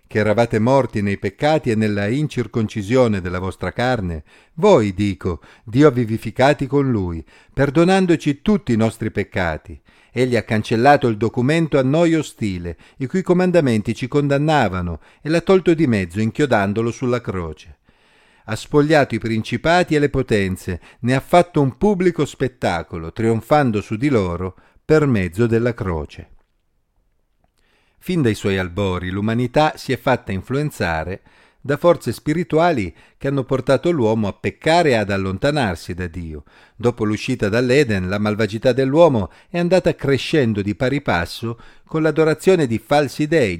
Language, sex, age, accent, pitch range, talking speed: Italian, male, 50-69, native, 100-145 Hz, 145 wpm